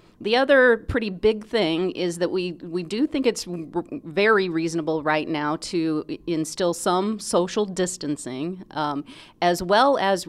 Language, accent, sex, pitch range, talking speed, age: English, American, female, 155-195 Hz, 145 wpm, 40-59